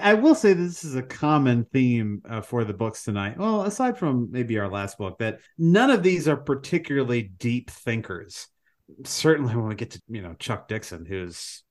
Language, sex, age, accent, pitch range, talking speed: English, male, 30-49, American, 110-145 Hz, 195 wpm